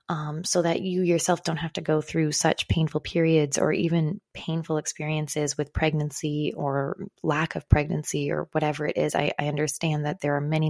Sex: female